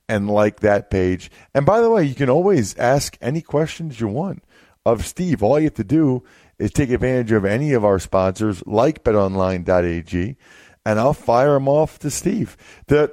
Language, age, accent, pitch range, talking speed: English, 40-59, American, 100-140 Hz, 185 wpm